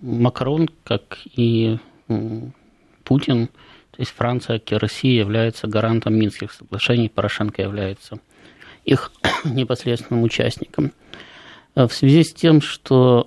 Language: Russian